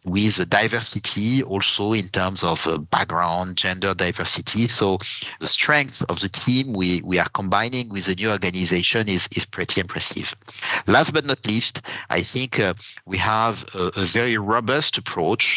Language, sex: English, male